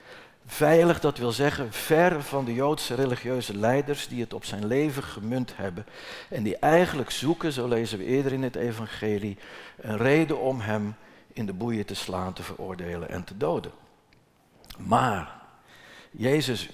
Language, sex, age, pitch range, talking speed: Dutch, male, 60-79, 110-145 Hz, 160 wpm